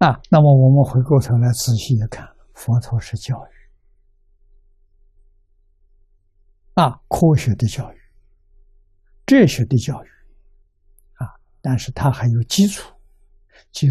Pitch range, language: 80-130 Hz, Chinese